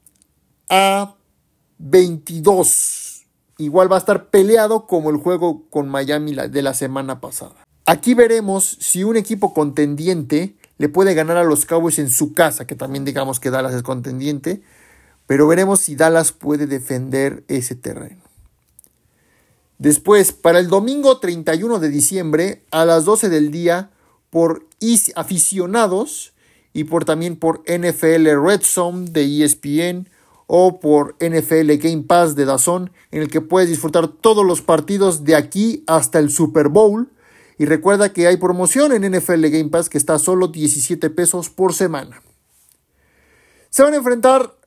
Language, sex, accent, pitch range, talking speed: Spanish, male, Mexican, 150-190 Hz, 150 wpm